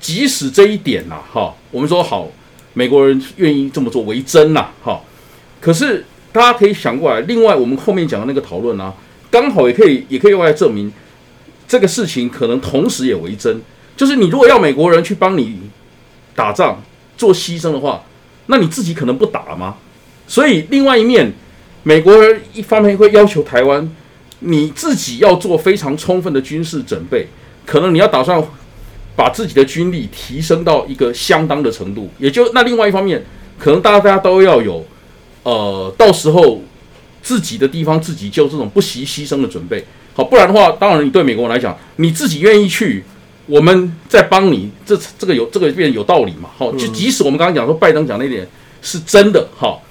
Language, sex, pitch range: Chinese, male, 140-210 Hz